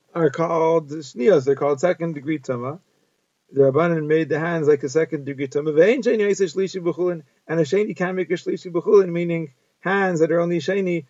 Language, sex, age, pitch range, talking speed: English, male, 40-59, 145-180 Hz, 175 wpm